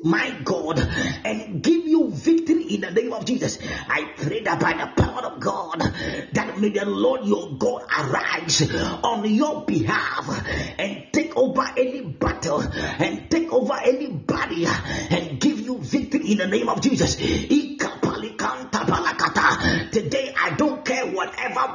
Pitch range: 230-290 Hz